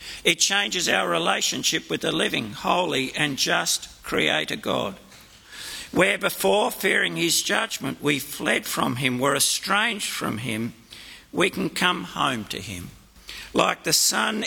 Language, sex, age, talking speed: English, male, 50-69, 140 wpm